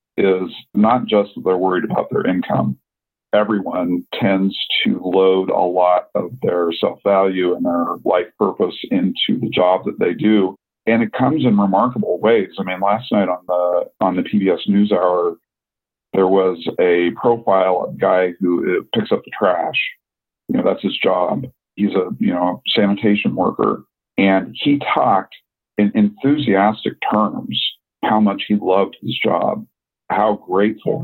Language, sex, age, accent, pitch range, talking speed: English, male, 50-69, American, 95-110 Hz, 155 wpm